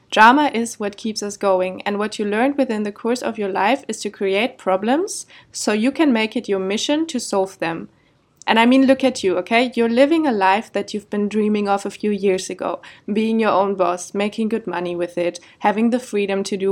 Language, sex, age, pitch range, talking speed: German, female, 20-39, 200-235 Hz, 230 wpm